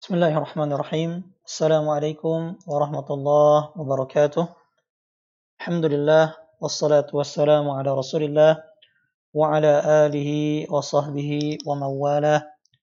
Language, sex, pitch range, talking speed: Indonesian, male, 145-160 Hz, 75 wpm